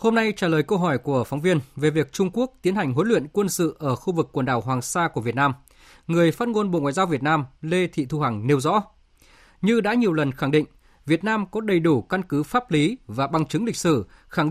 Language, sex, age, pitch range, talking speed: Vietnamese, male, 20-39, 135-180 Hz, 265 wpm